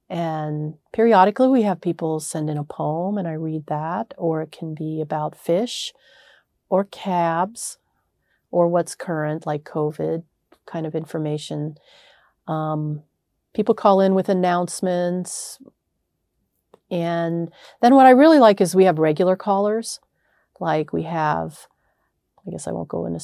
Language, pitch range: English, 155-195 Hz